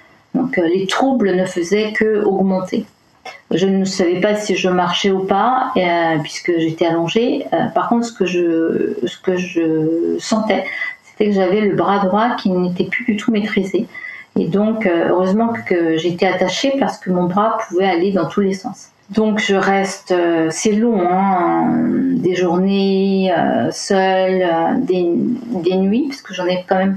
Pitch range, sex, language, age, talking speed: 160-205 Hz, female, French, 40-59, 175 wpm